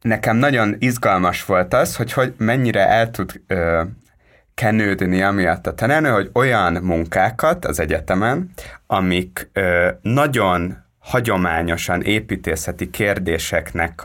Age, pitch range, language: 30-49, 90-115 Hz, Hungarian